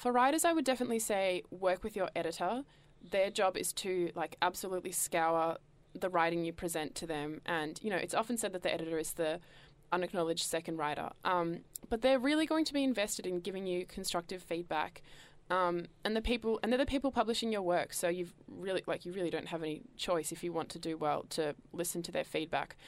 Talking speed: 215 wpm